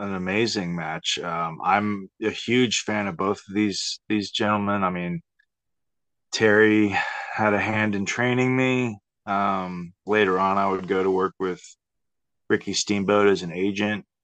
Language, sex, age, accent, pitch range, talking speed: English, male, 30-49, American, 95-120 Hz, 155 wpm